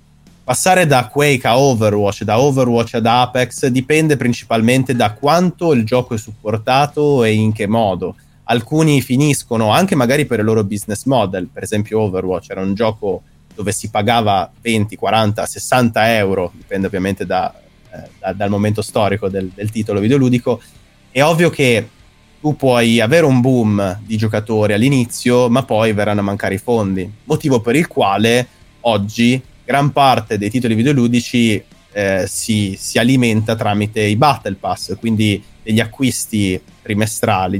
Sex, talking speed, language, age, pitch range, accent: male, 150 wpm, Italian, 20-39, 105-125 Hz, native